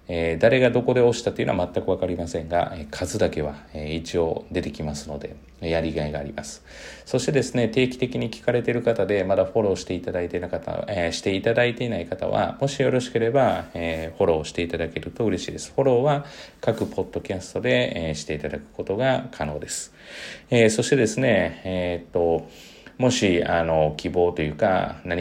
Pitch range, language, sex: 80-105 Hz, Japanese, male